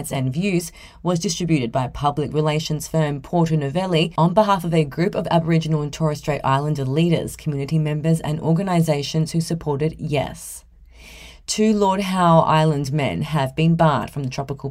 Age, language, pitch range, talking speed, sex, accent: 30-49, English, 150-180 Hz, 165 wpm, female, Australian